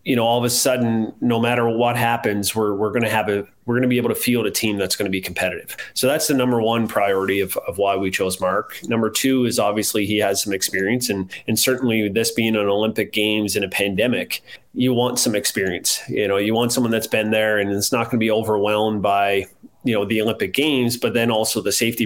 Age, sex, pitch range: 30-49, male, 100-120 Hz